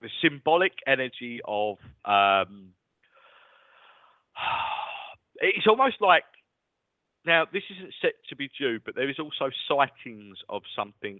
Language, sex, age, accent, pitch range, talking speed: English, male, 40-59, British, 95-145 Hz, 120 wpm